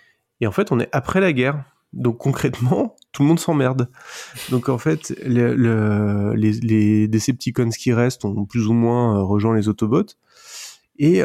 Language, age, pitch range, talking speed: French, 20-39, 105-130 Hz, 175 wpm